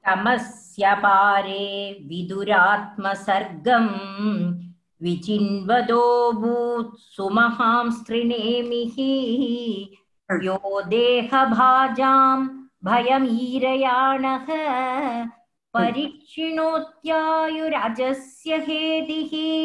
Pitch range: 200-310 Hz